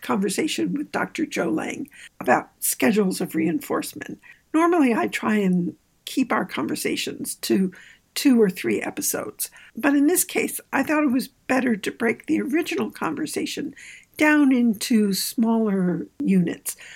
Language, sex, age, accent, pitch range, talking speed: English, female, 60-79, American, 200-300 Hz, 140 wpm